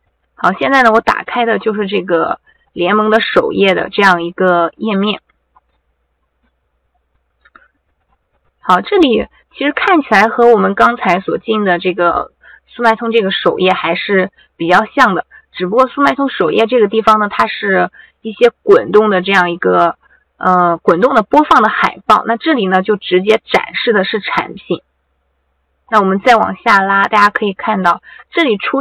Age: 20-39